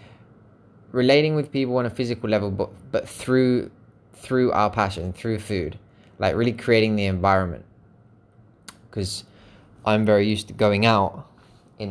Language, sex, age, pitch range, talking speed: English, male, 20-39, 100-115 Hz, 140 wpm